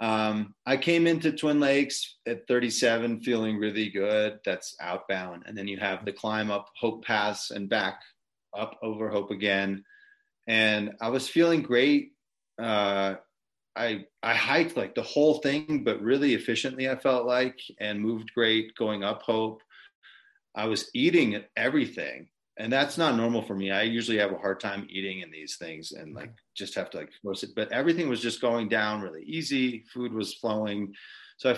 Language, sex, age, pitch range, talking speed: English, male, 30-49, 105-155 Hz, 175 wpm